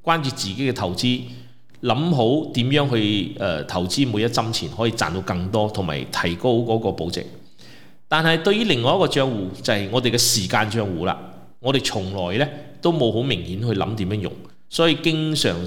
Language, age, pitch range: Chinese, 30-49, 105-145 Hz